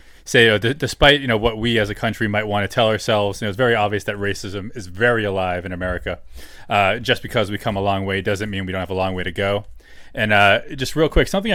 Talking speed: 275 wpm